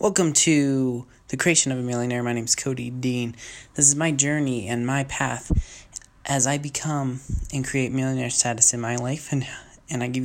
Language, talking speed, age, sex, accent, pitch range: English, 195 wpm, 20-39, male, American, 115-135 Hz